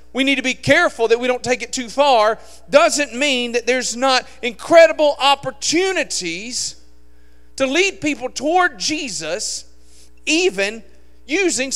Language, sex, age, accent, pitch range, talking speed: English, male, 40-59, American, 175-275 Hz, 135 wpm